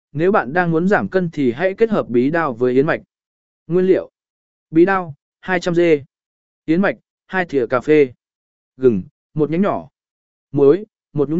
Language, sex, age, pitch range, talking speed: Vietnamese, male, 20-39, 145-190 Hz, 175 wpm